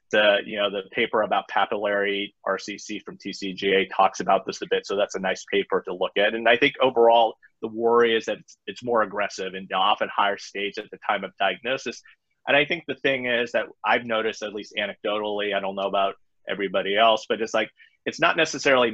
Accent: American